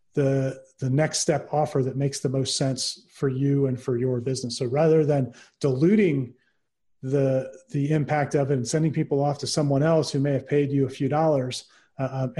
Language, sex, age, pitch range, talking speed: English, male, 30-49, 135-160 Hz, 200 wpm